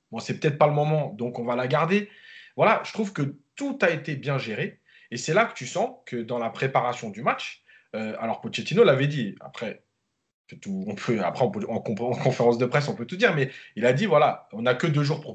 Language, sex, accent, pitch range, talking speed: French, male, French, 125-180 Hz, 250 wpm